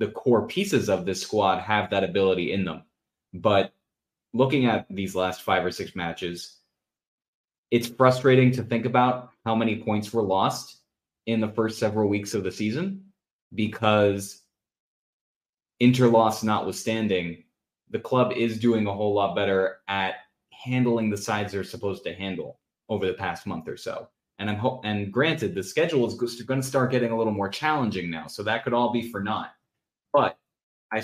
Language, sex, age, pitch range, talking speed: English, male, 20-39, 95-120 Hz, 170 wpm